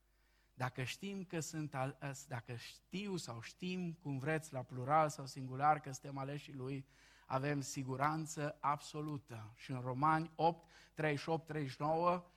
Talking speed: 135 wpm